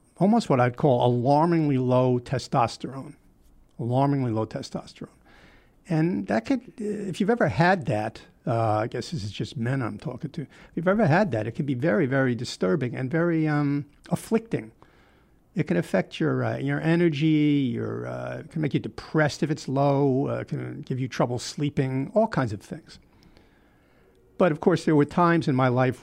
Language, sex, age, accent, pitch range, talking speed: English, male, 50-69, American, 120-165 Hz, 185 wpm